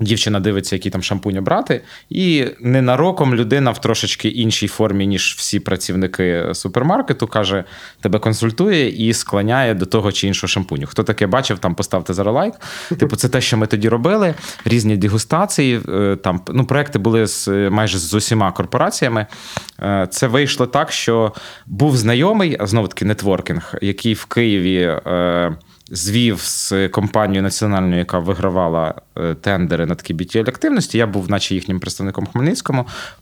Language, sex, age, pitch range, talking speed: Ukrainian, male, 20-39, 95-125 Hz, 145 wpm